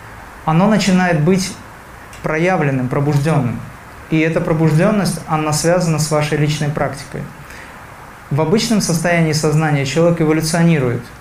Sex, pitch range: male, 140-160 Hz